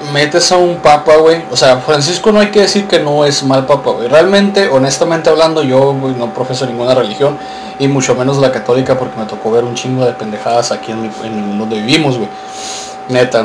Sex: male